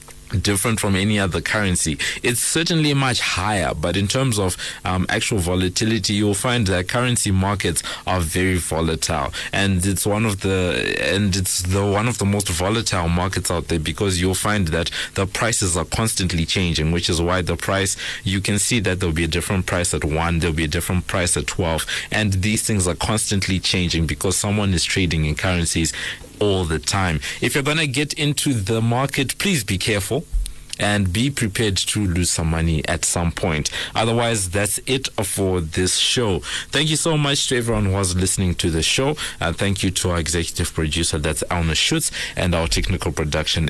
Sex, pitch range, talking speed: male, 85-110 Hz, 190 wpm